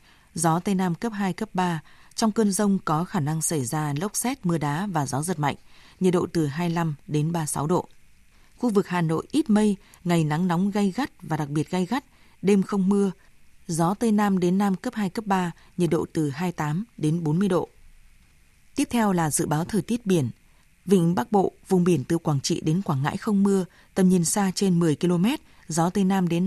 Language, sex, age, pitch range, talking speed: Vietnamese, female, 20-39, 160-200 Hz, 220 wpm